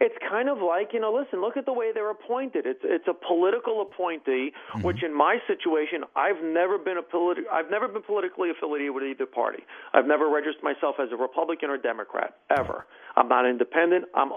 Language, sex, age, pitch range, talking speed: English, male, 40-59, 170-275 Hz, 205 wpm